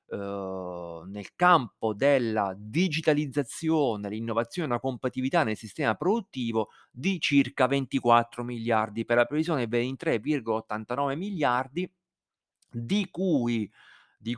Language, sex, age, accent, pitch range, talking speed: Italian, male, 40-59, native, 110-150 Hz, 100 wpm